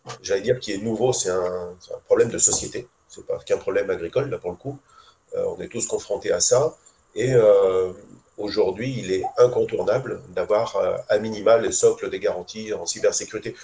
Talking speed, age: 190 wpm, 40-59